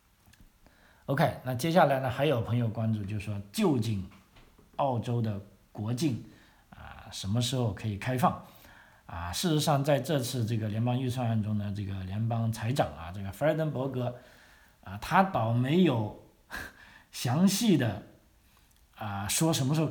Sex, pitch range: male, 110-145 Hz